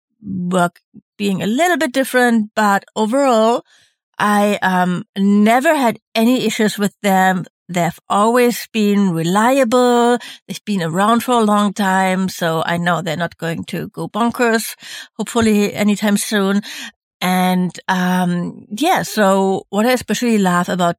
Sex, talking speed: female, 135 wpm